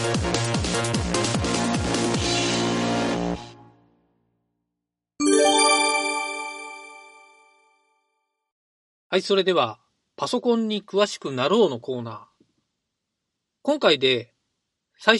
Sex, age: male, 40-59